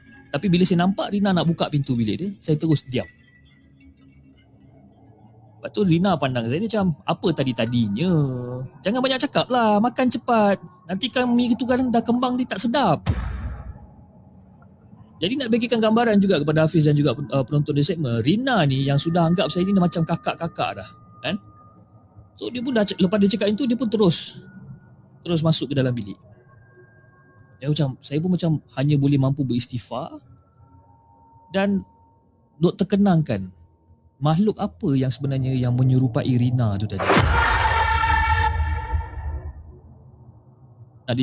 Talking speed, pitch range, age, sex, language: 145 wpm, 120-200 Hz, 30-49, male, Malay